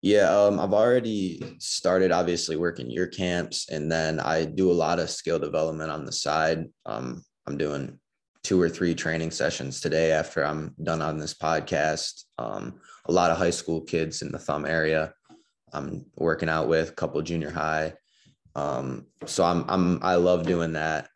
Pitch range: 80-85 Hz